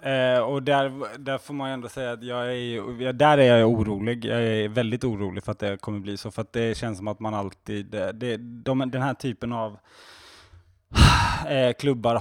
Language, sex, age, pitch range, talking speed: Swedish, male, 20-39, 105-135 Hz, 210 wpm